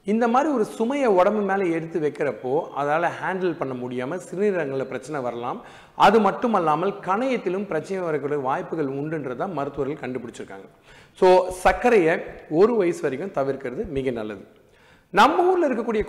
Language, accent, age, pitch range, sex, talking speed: Tamil, native, 40-59, 145-210 Hz, male, 130 wpm